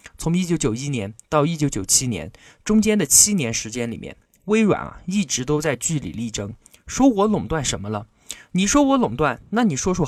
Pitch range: 130-220 Hz